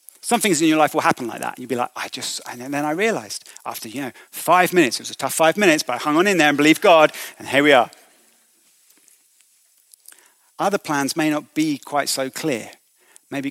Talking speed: 230 wpm